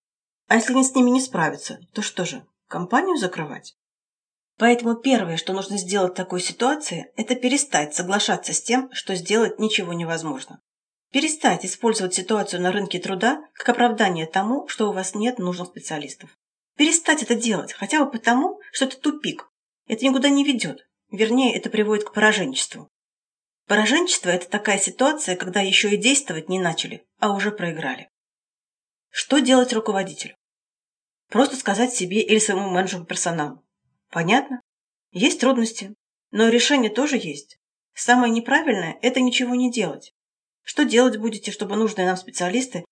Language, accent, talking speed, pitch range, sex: Russian, native, 145 wpm, 185-250 Hz, female